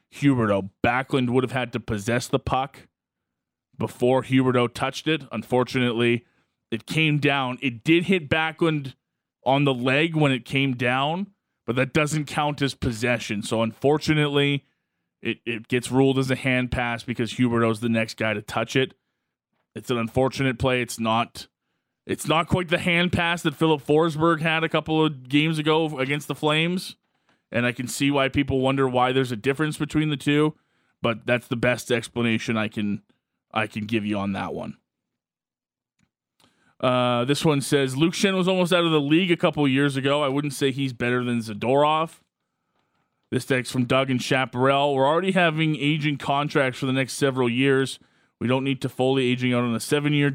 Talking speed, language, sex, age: 185 wpm, English, male, 20-39